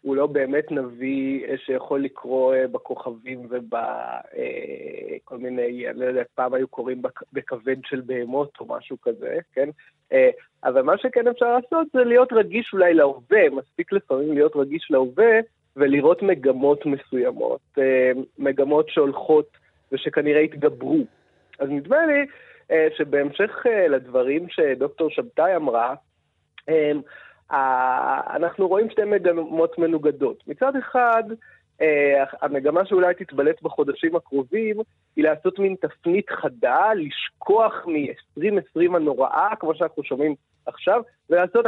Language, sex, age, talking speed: Hebrew, male, 30-49, 110 wpm